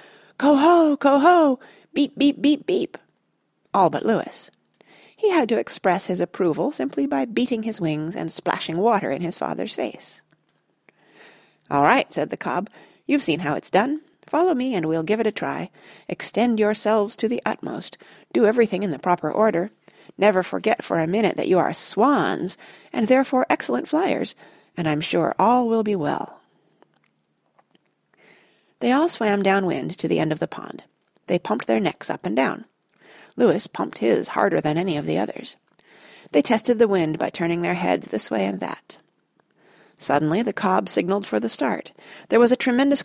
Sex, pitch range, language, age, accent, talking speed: female, 185-270 Hz, English, 40-59, American, 175 wpm